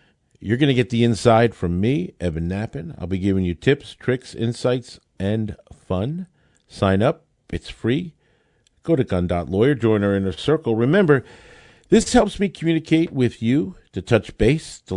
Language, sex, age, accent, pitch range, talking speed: English, male, 50-69, American, 95-125 Hz, 165 wpm